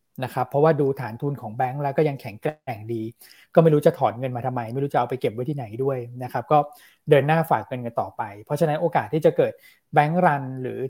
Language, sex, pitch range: Thai, male, 125-155 Hz